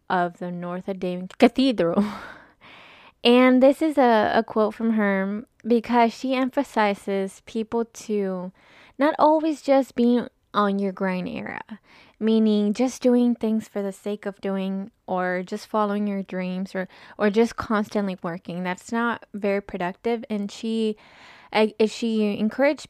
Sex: female